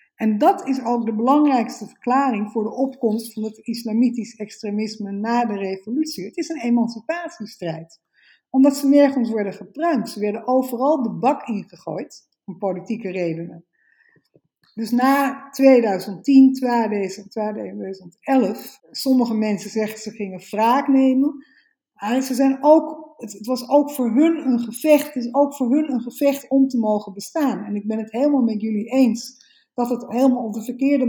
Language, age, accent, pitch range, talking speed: Dutch, 50-69, Dutch, 220-280 Hz, 150 wpm